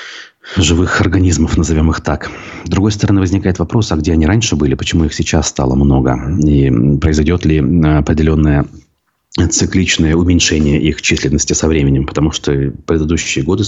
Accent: native